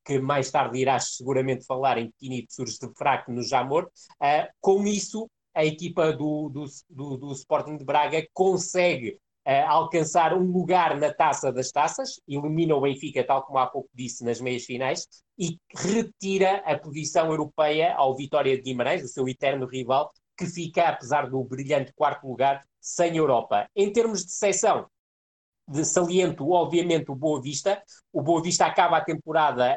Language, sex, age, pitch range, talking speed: Portuguese, male, 20-39, 135-175 Hz, 160 wpm